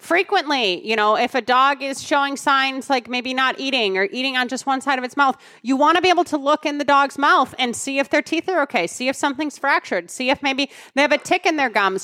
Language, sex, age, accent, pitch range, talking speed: English, female, 30-49, American, 215-285 Hz, 270 wpm